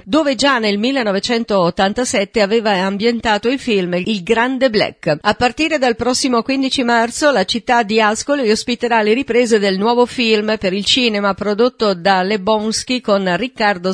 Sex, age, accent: female, 50-69, native